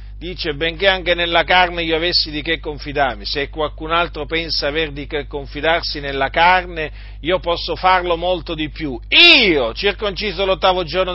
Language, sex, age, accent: Italian, male, 40-59, native